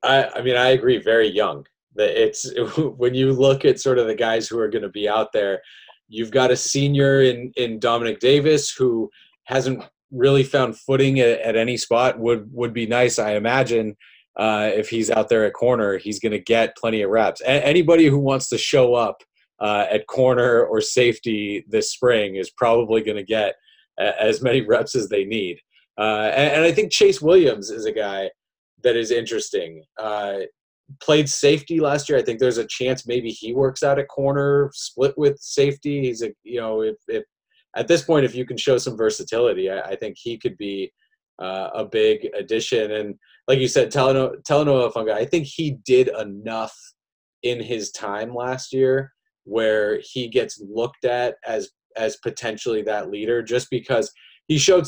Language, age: English, 30-49